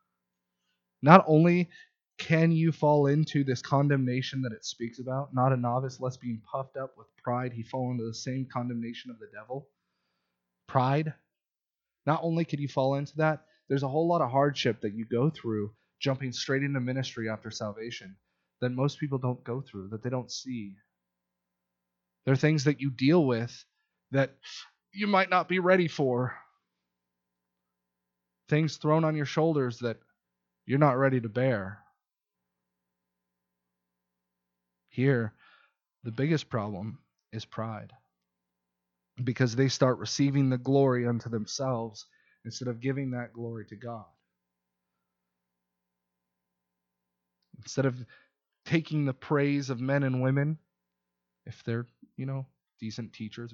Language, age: English, 20-39